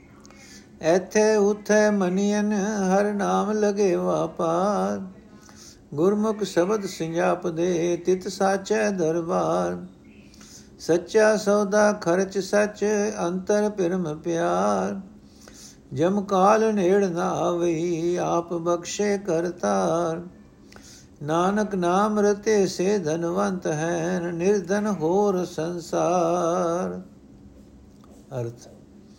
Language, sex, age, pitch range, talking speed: Punjabi, male, 60-79, 130-190 Hz, 80 wpm